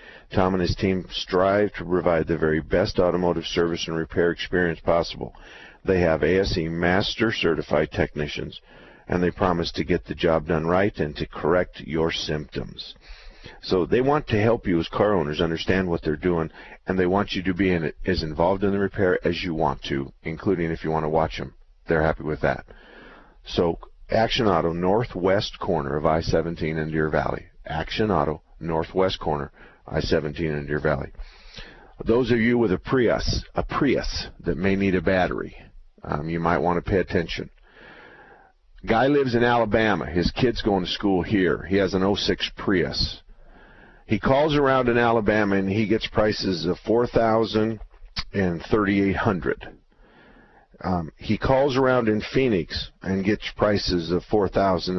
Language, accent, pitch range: English, American, 80-105 Hz